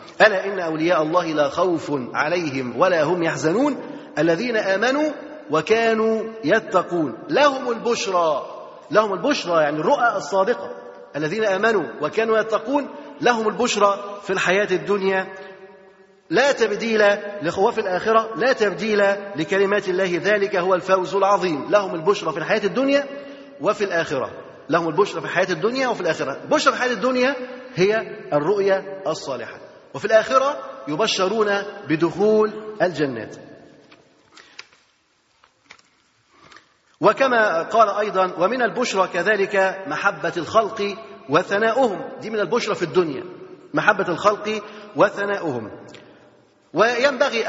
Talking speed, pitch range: 110 wpm, 180-225 Hz